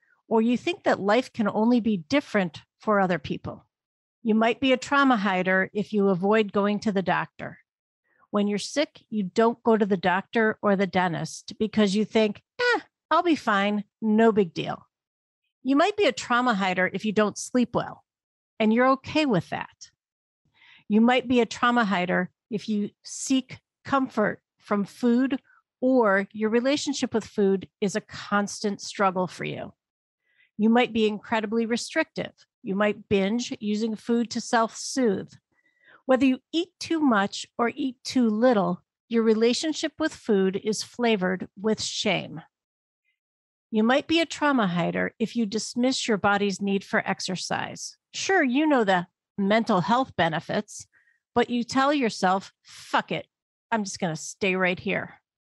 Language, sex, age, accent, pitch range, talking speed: English, female, 50-69, American, 195-245 Hz, 160 wpm